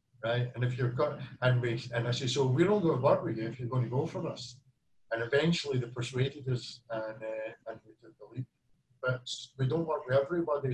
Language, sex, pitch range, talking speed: English, male, 125-140 Hz, 235 wpm